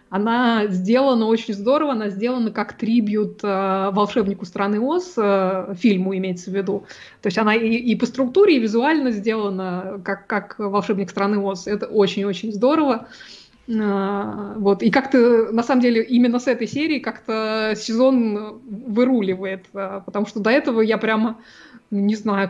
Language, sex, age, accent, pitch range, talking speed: Russian, female, 20-39, native, 200-235 Hz, 155 wpm